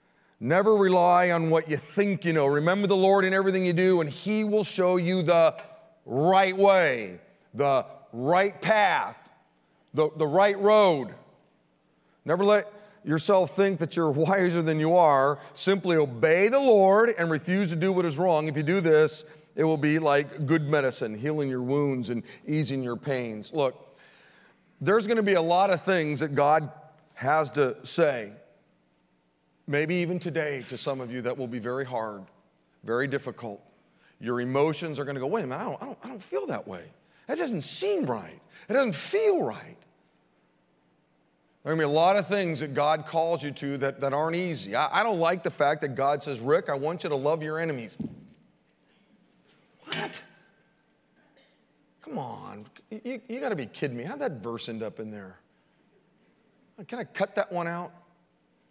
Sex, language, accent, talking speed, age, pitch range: male, English, American, 185 wpm, 40-59, 135-185 Hz